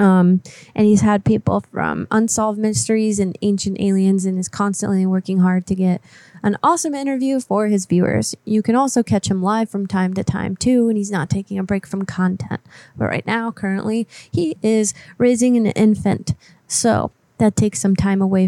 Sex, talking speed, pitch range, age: female, 190 wpm, 185-220 Hz, 20-39